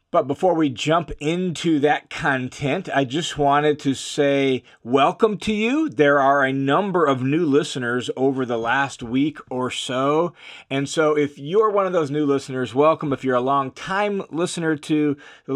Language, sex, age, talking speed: English, male, 40-59, 175 wpm